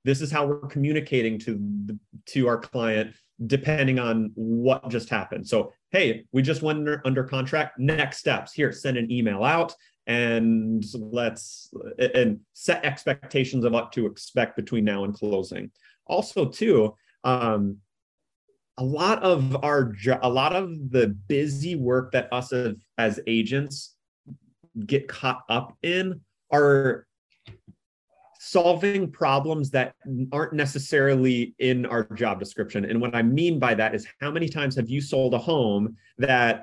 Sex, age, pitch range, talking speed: male, 30-49, 115-150 Hz, 150 wpm